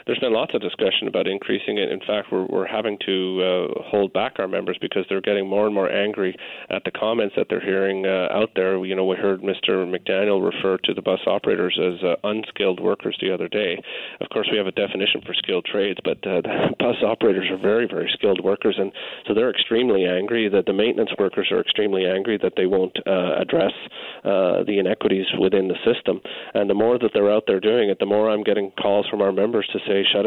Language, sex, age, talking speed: English, male, 30-49, 230 wpm